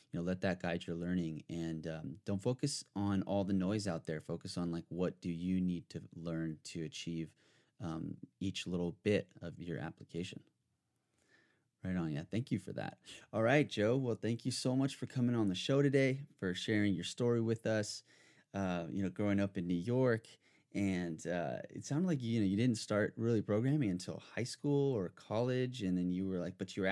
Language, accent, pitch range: English, American, 95-115 Hz